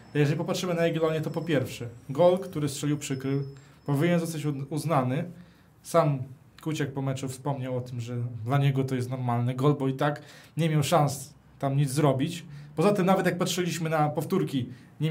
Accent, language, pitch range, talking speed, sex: native, Polish, 135-160 Hz, 180 wpm, male